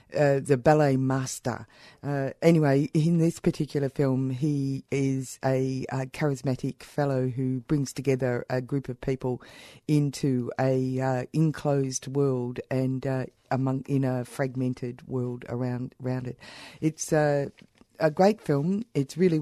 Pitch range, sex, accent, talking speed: 130-150 Hz, female, Australian, 140 wpm